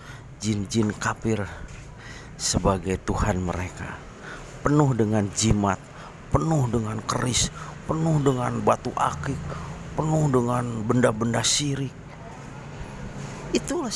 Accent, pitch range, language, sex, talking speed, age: native, 95-135 Hz, Indonesian, male, 85 wpm, 40-59